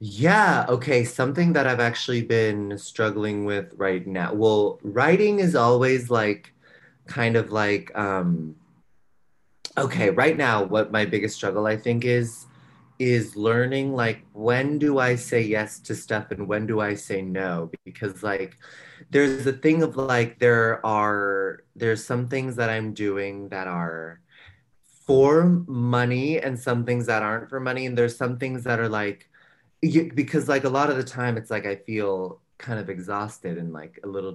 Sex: male